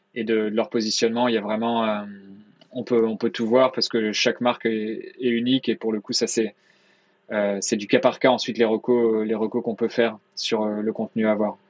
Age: 20-39